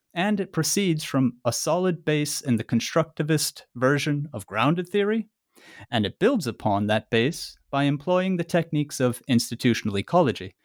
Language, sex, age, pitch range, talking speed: English, male, 30-49, 115-160 Hz, 150 wpm